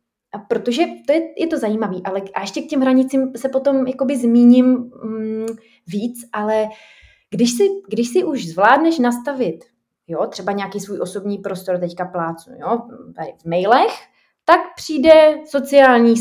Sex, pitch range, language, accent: female, 220-265 Hz, Czech, native